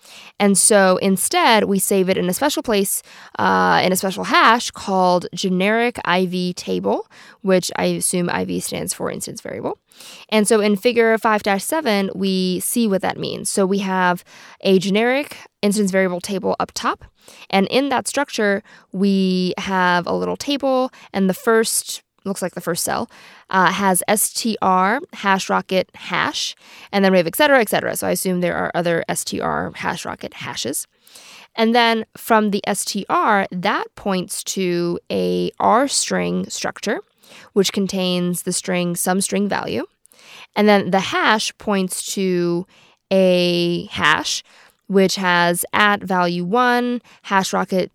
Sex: female